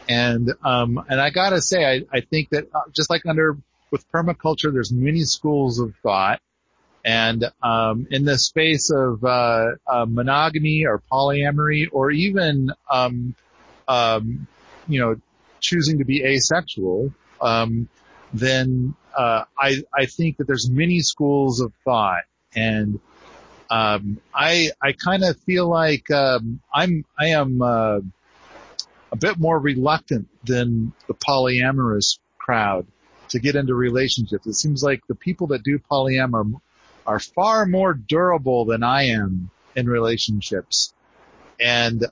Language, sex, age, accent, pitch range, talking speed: English, male, 40-59, American, 120-150 Hz, 140 wpm